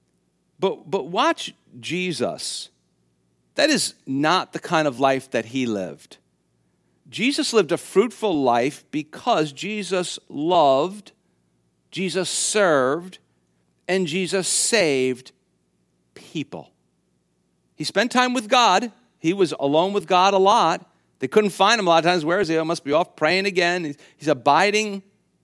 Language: English